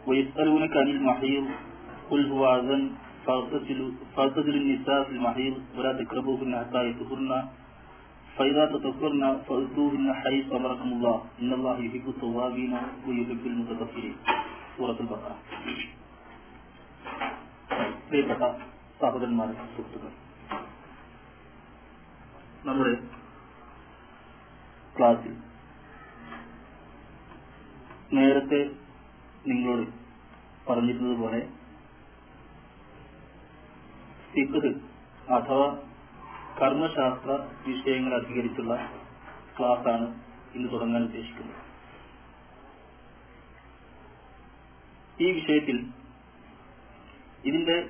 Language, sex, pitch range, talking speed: Malayalam, male, 115-135 Hz, 55 wpm